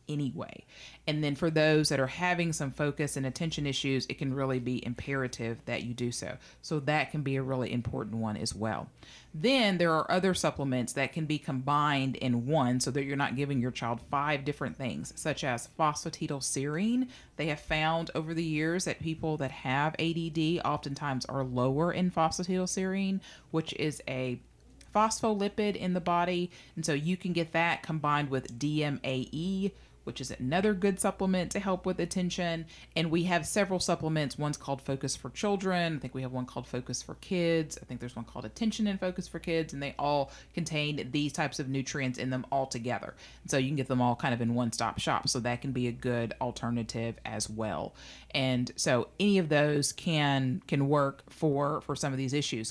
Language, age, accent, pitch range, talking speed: English, 40-59, American, 130-165 Hz, 195 wpm